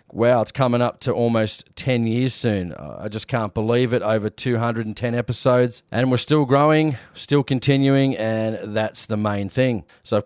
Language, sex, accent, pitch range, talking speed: English, male, Australian, 110-135 Hz, 175 wpm